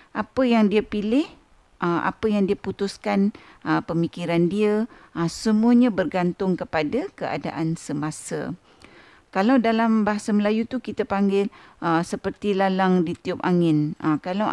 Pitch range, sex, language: 170-230 Hz, female, Malay